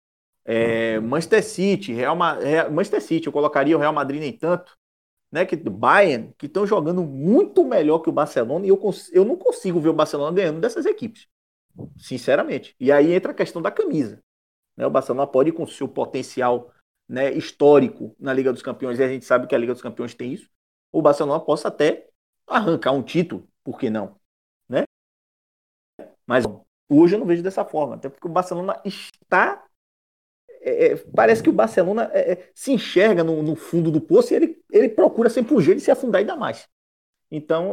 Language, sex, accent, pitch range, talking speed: Portuguese, male, Brazilian, 140-215 Hz, 195 wpm